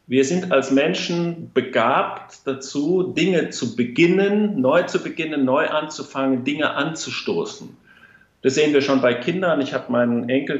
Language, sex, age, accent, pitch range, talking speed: German, male, 50-69, German, 125-155 Hz, 145 wpm